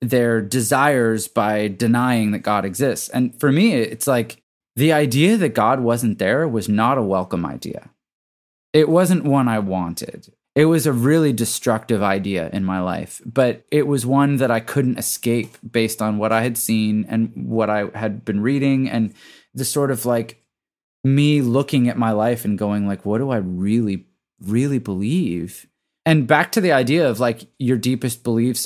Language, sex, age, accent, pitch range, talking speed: English, male, 20-39, American, 105-140 Hz, 180 wpm